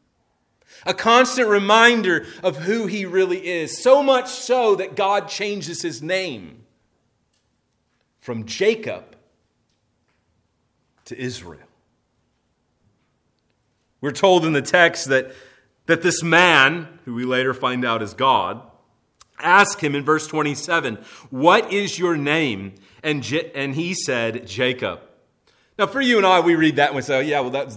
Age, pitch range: 30-49, 115-175 Hz